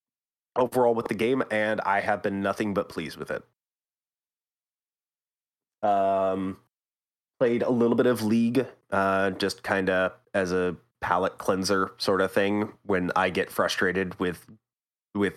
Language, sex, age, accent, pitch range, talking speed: English, male, 30-49, American, 95-115 Hz, 140 wpm